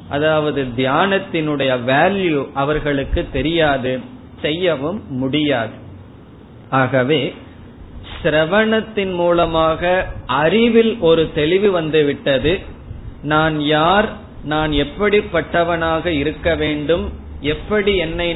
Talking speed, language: 60 wpm, Tamil